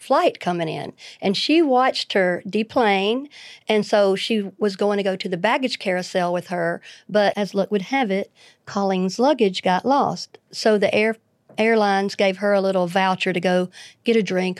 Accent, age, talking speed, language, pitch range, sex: American, 50-69, 180 wpm, English, 190-225 Hz, female